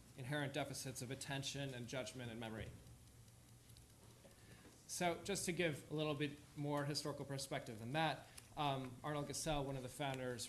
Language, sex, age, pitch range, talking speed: English, male, 20-39, 120-145 Hz, 155 wpm